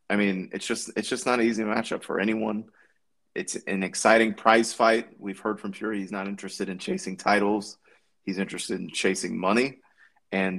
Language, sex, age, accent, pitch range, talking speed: English, male, 20-39, American, 95-110 Hz, 185 wpm